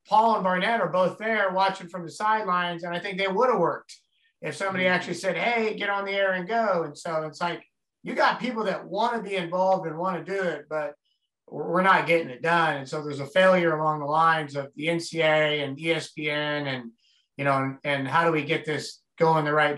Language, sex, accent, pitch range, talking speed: English, male, American, 145-180 Hz, 235 wpm